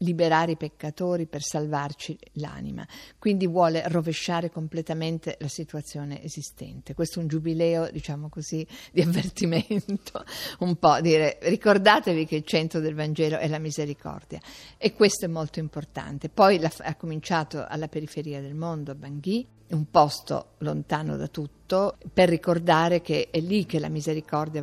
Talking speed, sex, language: 145 wpm, female, Italian